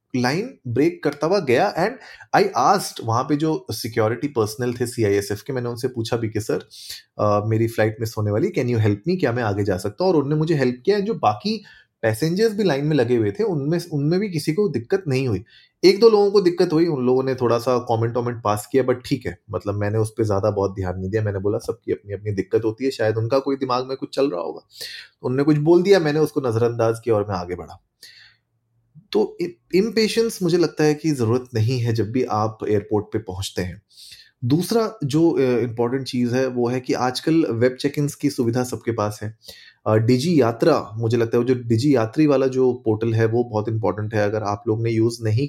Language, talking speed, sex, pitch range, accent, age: Hindi, 225 wpm, male, 110-150 Hz, native, 30-49